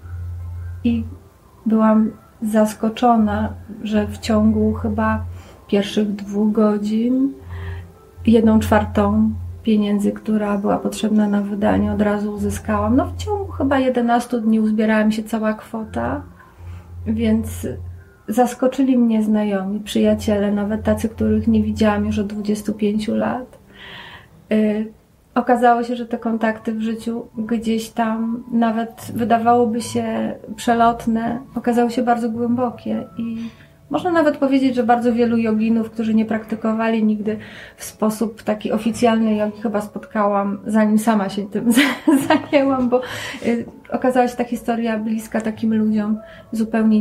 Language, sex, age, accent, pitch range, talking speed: Polish, female, 30-49, native, 205-230 Hz, 120 wpm